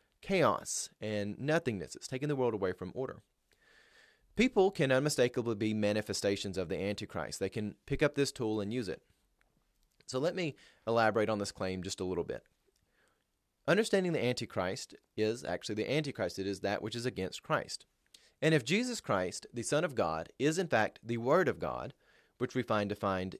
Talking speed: 180 wpm